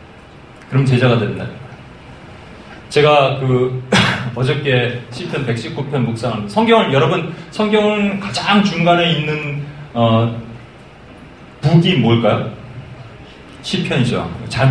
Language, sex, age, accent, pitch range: Korean, male, 30-49, native, 120-175 Hz